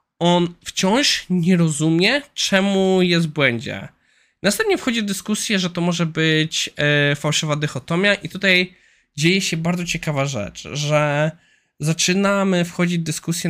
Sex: male